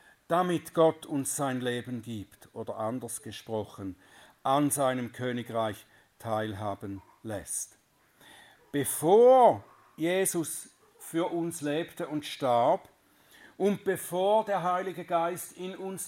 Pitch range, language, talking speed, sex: 135-195 Hz, German, 105 wpm, male